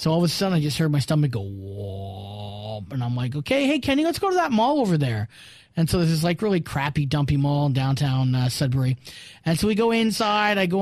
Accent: American